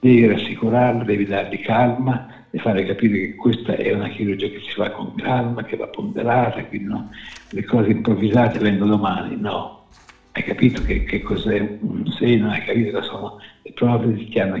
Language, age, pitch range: Italian, 60-79, 105-125 Hz